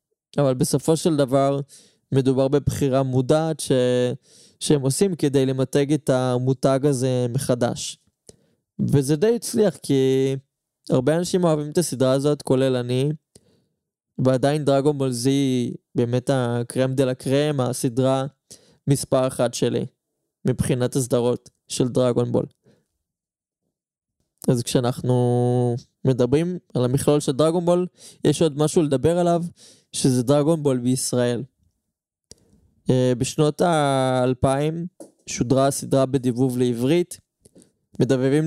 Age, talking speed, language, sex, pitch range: 20-39, 105 wpm, Hebrew, male, 130-150 Hz